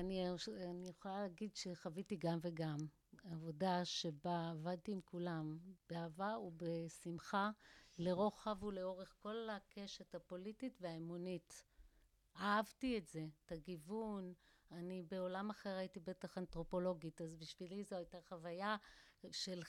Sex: female